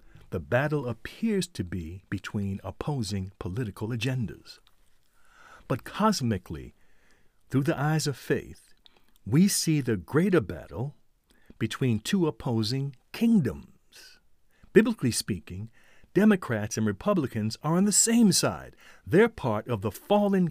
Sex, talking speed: male, 115 wpm